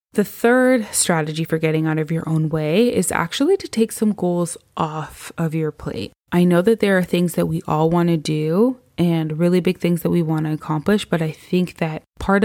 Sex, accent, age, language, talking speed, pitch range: female, American, 20-39, English, 220 wpm, 155-185 Hz